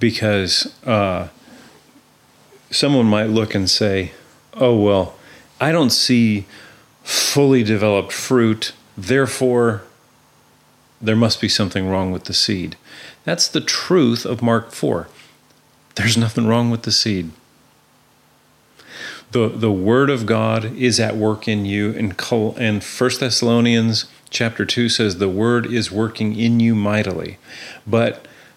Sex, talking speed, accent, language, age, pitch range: male, 130 wpm, American, English, 40-59, 105-120 Hz